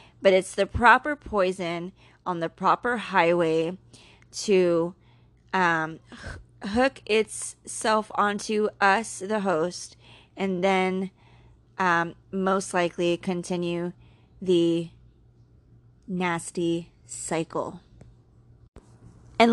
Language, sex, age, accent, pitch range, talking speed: English, female, 20-39, American, 160-205 Hz, 85 wpm